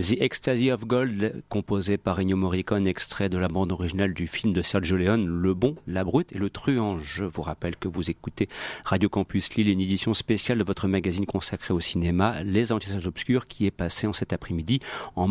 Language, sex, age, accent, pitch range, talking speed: French, male, 40-59, French, 100-125 Hz, 210 wpm